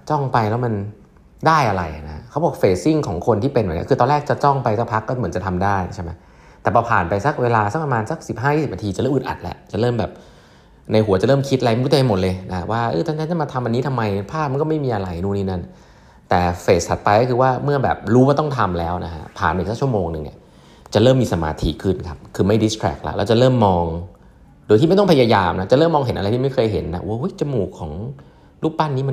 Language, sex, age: Thai, male, 20-39